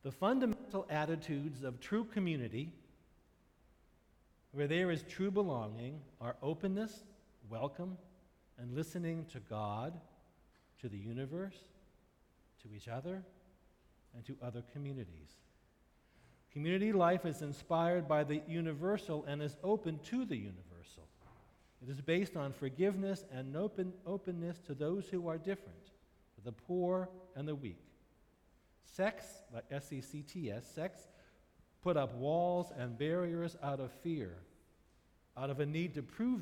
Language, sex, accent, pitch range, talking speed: English, male, American, 110-175 Hz, 125 wpm